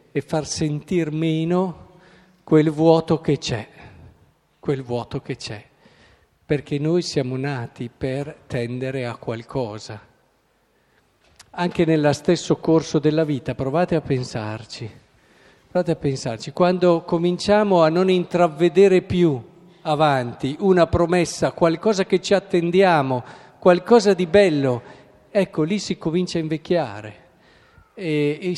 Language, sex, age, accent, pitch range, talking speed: Italian, male, 50-69, native, 140-180 Hz, 120 wpm